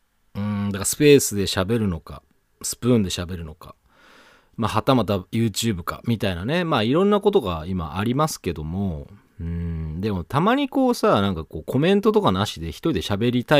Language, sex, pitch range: Japanese, male, 95-150 Hz